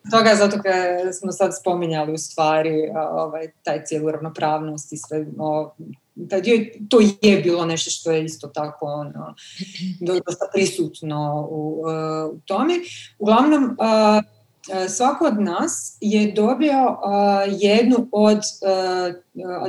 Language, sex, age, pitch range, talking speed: English, female, 30-49, 165-215 Hz, 125 wpm